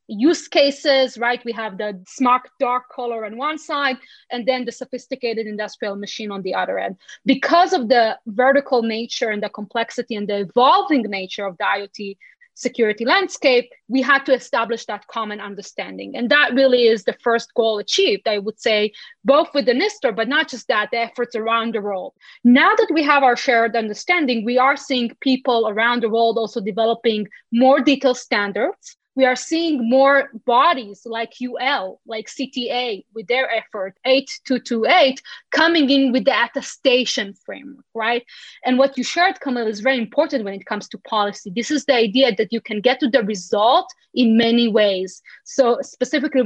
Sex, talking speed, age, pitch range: female, 180 wpm, 30-49, 225-270 Hz